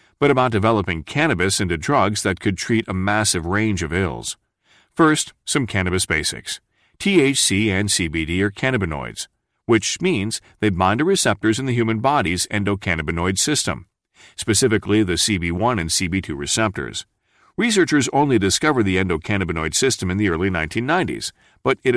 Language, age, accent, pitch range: English, 40-59, American, 90-110 Hz